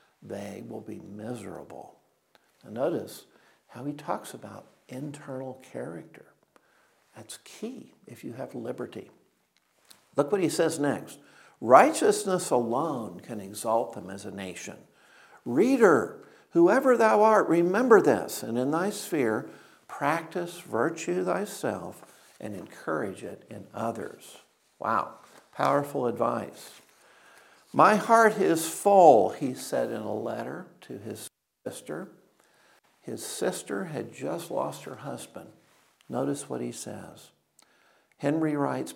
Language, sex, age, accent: Chinese, male, 60-79, American